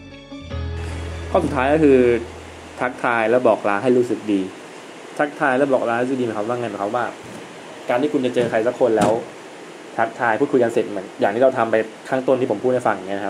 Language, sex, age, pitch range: Thai, male, 20-39, 105-130 Hz